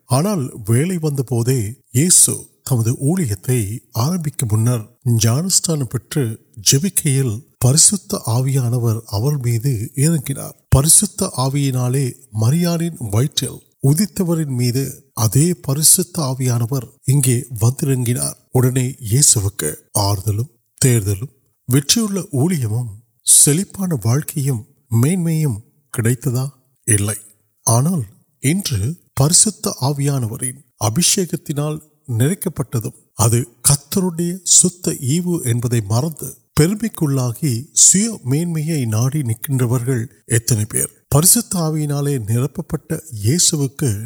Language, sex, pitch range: Urdu, male, 120-155 Hz